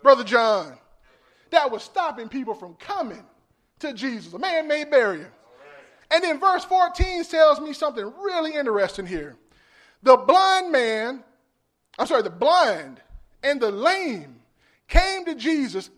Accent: American